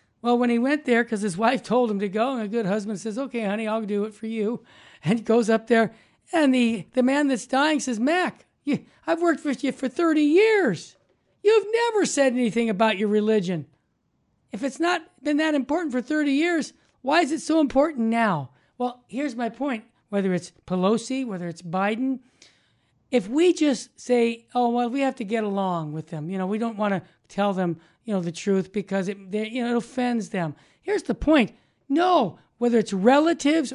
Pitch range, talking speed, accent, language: 205-265 Hz, 205 wpm, American, English